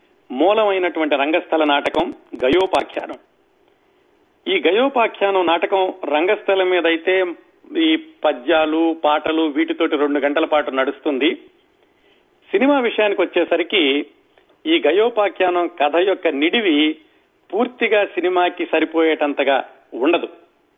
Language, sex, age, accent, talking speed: Telugu, male, 40-59, native, 85 wpm